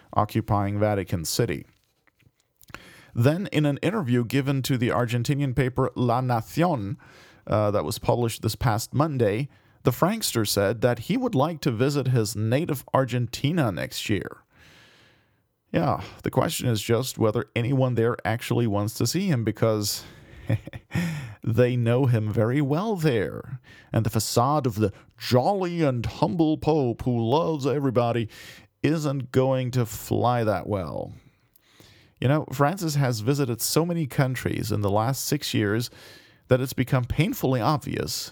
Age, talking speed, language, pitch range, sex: 40-59, 140 wpm, English, 110-145 Hz, male